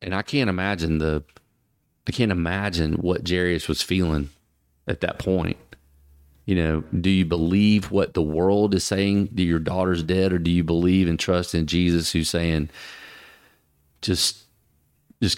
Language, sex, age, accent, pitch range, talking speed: English, male, 30-49, American, 80-100 Hz, 160 wpm